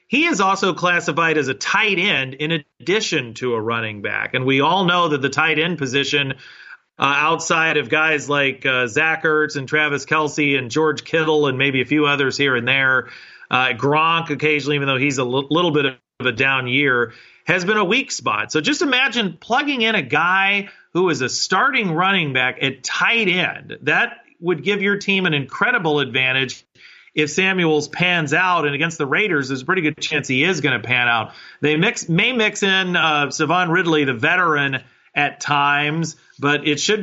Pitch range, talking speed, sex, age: 135-175 Hz, 195 wpm, male, 30-49